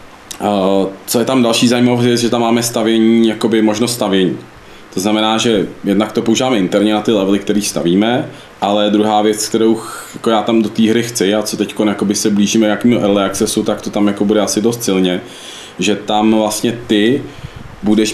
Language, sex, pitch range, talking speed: Czech, male, 105-115 Hz, 190 wpm